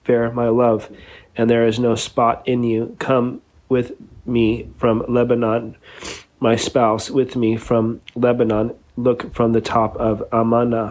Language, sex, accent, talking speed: English, male, American, 150 wpm